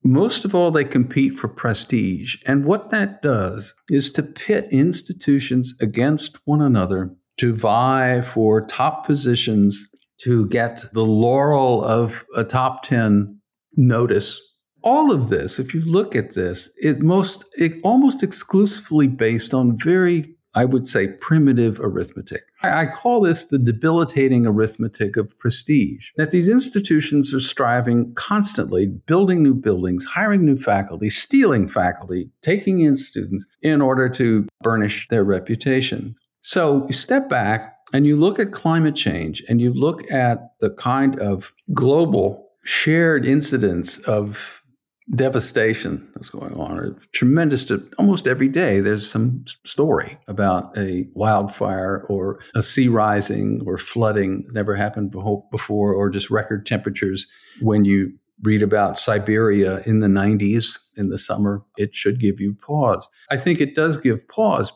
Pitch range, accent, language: 105-150 Hz, American, English